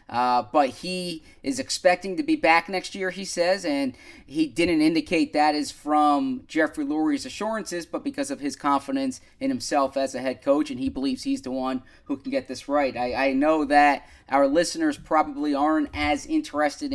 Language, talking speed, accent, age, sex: English, 190 wpm, American, 20-39, male